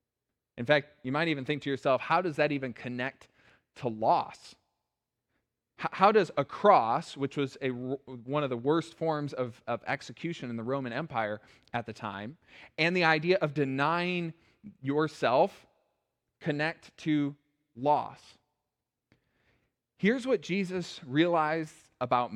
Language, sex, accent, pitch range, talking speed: English, male, American, 120-160 Hz, 135 wpm